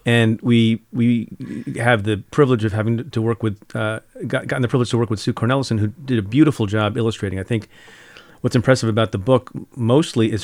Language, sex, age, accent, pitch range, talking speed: English, male, 40-59, American, 110-130 Hz, 205 wpm